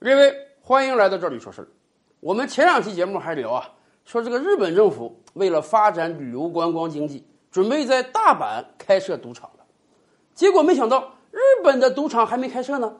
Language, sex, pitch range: Chinese, male, 230-355 Hz